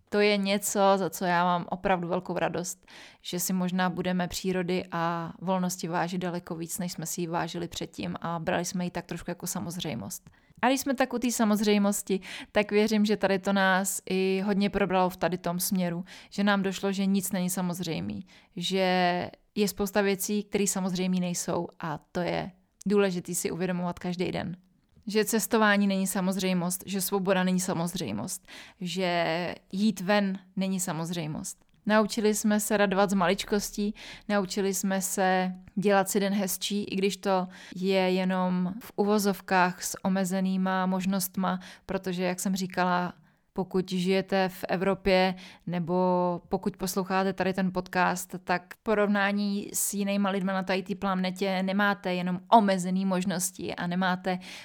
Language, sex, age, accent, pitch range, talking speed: Czech, female, 20-39, native, 180-200 Hz, 155 wpm